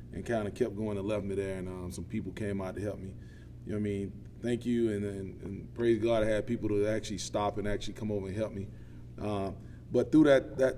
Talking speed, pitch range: 265 wpm, 100-120 Hz